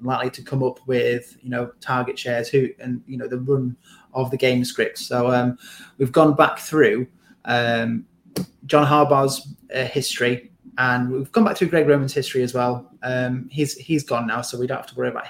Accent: British